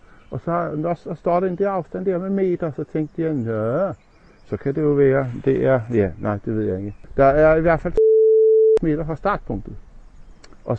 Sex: male